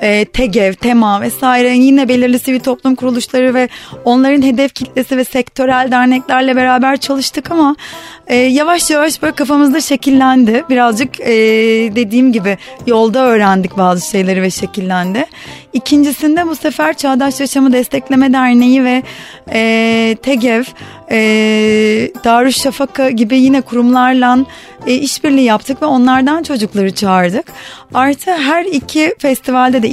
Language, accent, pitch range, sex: Turkish, native, 220-275 Hz, female